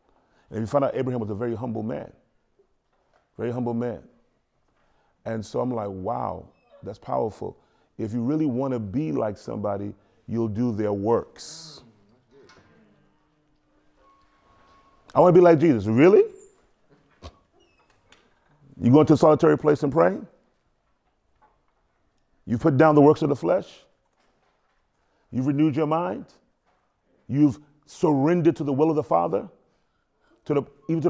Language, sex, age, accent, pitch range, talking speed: English, male, 30-49, American, 135-185 Hz, 135 wpm